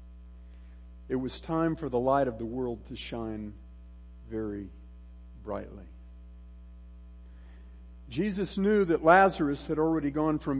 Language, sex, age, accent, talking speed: English, male, 50-69, American, 120 wpm